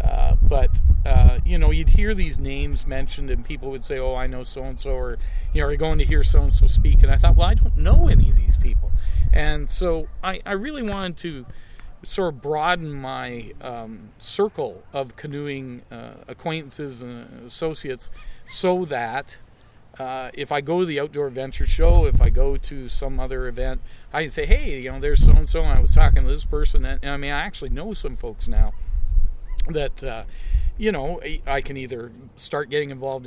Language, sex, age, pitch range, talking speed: English, male, 40-59, 105-145 Hz, 200 wpm